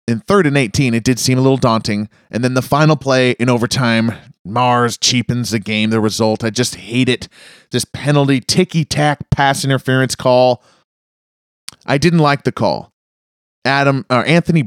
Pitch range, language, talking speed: 125-165 Hz, English, 170 wpm